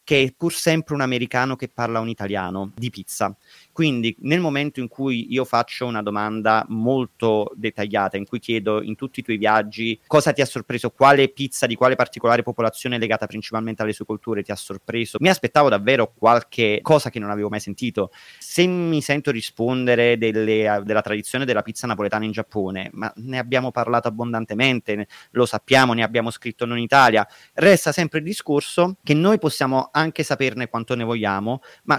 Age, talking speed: 30-49, 185 wpm